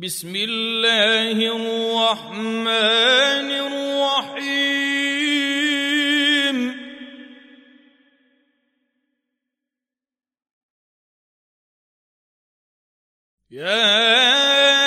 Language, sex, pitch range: Arabic, male, 230-280 Hz